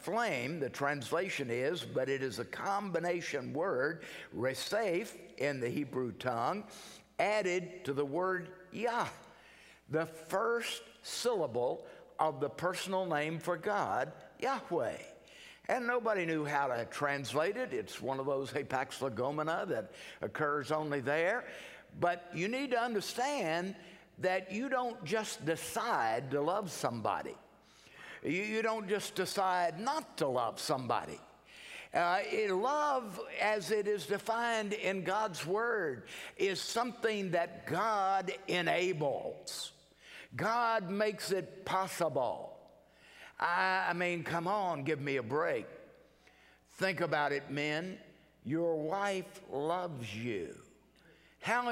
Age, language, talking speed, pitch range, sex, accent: 60-79, English, 120 wpm, 155-225 Hz, male, American